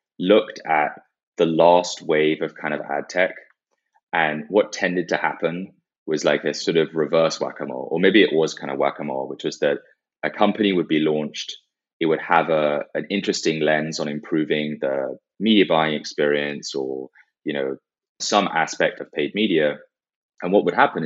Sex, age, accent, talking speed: male, 20-39, British, 175 wpm